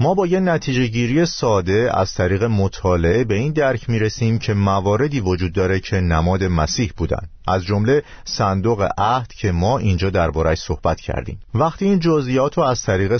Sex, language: male, Persian